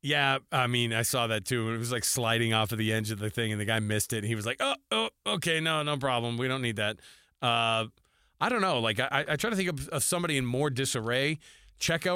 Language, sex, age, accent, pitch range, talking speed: English, male, 30-49, American, 115-140 Hz, 265 wpm